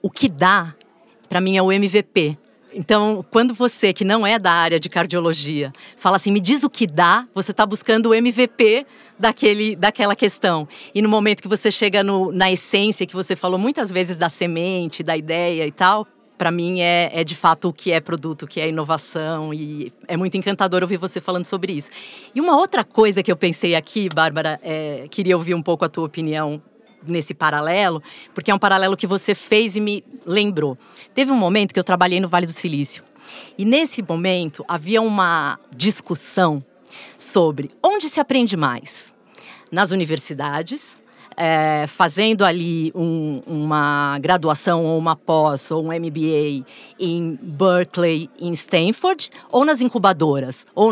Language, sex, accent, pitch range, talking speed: Portuguese, female, Brazilian, 160-210 Hz, 170 wpm